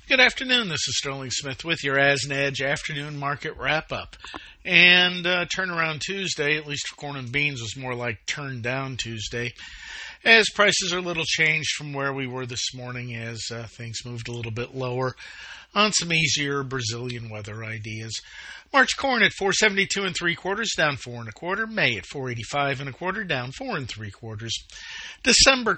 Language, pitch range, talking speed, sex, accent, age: English, 120-170 Hz, 185 wpm, male, American, 50-69